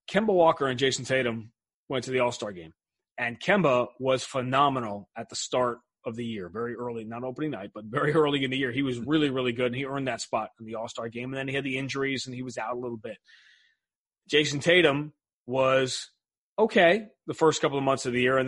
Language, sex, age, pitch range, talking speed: English, male, 30-49, 125-150 Hz, 230 wpm